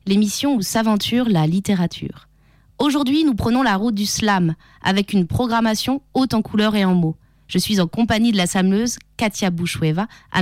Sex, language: female, French